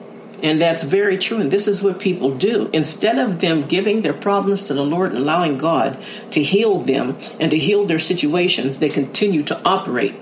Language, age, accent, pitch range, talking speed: English, 50-69, American, 155-215 Hz, 200 wpm